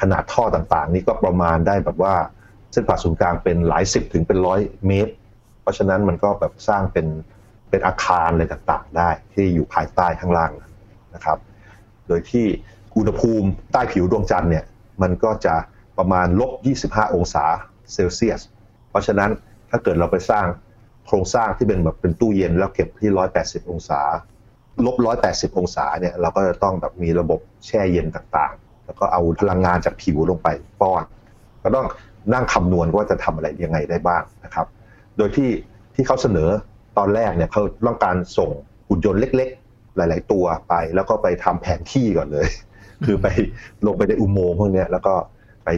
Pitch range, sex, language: 85-110 Hz, male, Thai